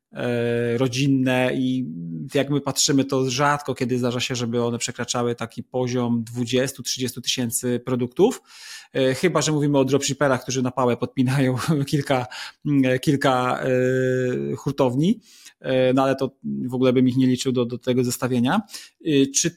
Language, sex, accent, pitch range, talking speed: Polish, male, native, 130-160 Hz, 135 wpm